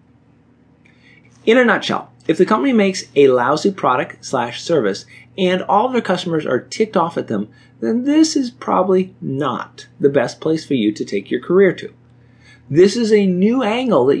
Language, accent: English, American